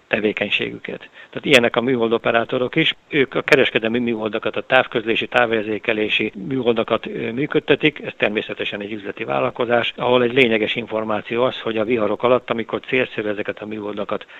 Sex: male